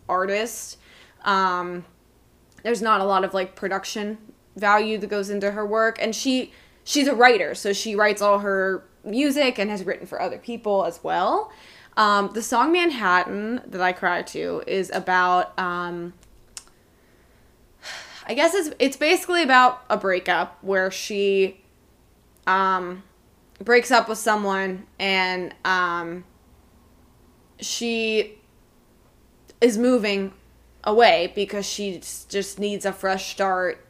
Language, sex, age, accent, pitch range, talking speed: English, female, 10-29, American, 180-220 Hz, 130 wpm